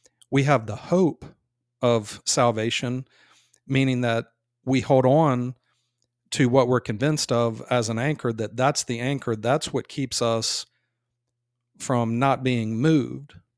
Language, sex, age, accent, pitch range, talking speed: English, male, 40-59, American, 120-135 Hz, 135 wpm